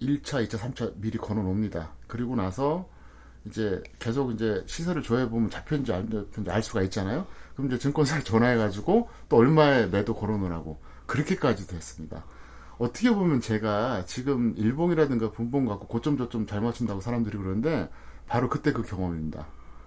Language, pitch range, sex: Korean, 90-140 Hz, male